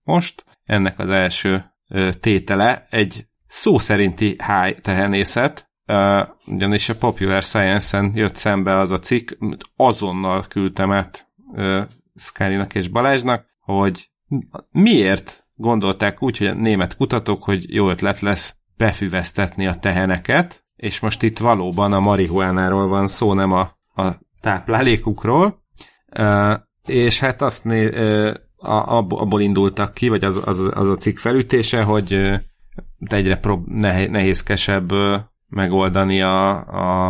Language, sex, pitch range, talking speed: Hungarian, male, 95-110 Hz, 125 wpm